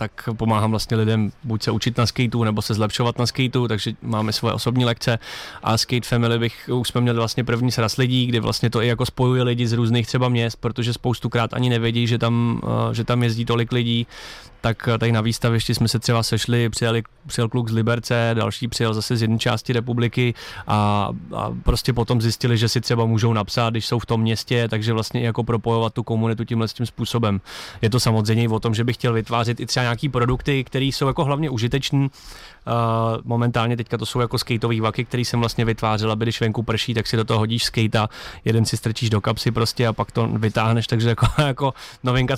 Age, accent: 20-39, native